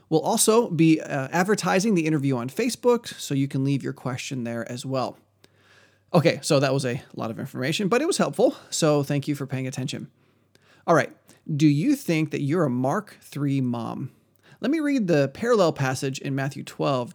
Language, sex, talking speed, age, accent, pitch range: English, male, 195 wpm, 30-49, American, 130-165 Hz